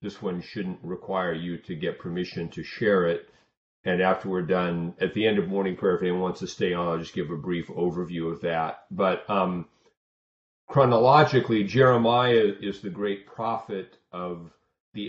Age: 40-59